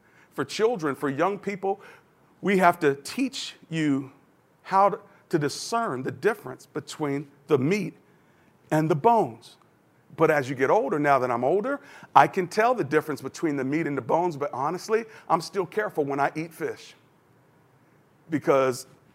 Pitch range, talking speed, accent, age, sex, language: 125-160 Hz, 165 wpm, American, 40-59, male, English